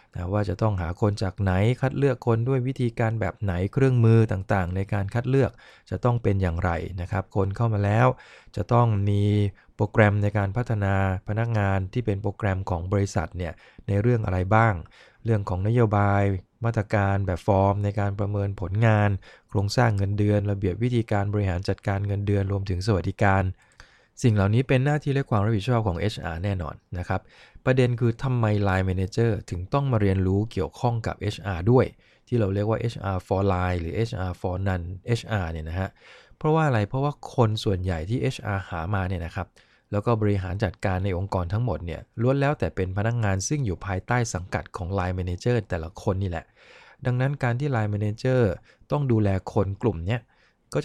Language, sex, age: English, male, 20-39